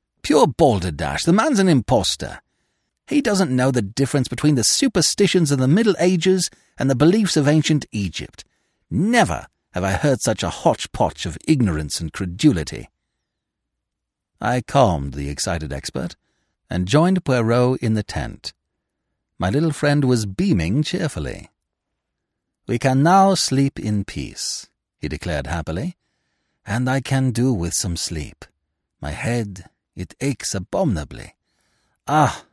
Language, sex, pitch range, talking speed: English, male, 90-150 Hz, 135 wpm